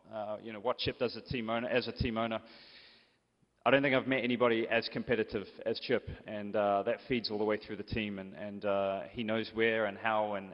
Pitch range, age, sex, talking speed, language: 105-115 Hz, 20-39, male, 245 wpm, English